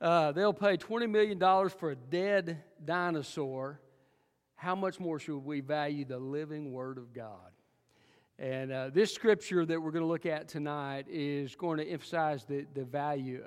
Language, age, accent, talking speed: English, 50-69, American, 170 wpm